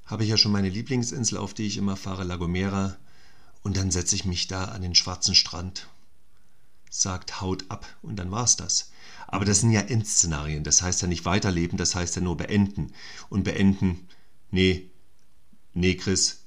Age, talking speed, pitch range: 40-59, 185 wpm, 95-125 Hz